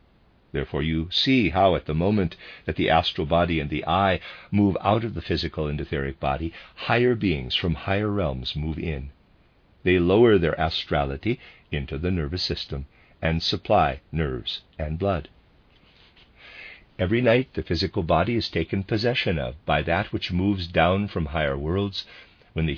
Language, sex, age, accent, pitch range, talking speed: English, male, 50-69, American, 75-100 Hz, 160 wpm